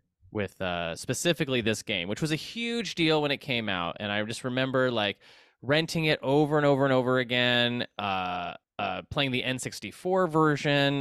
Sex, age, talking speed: male, 20-39, 180 wpm